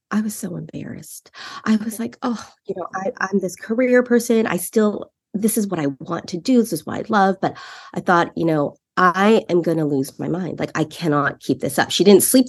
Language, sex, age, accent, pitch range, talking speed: English, female, 30-49, American, 160-230 Hz, 240 wpm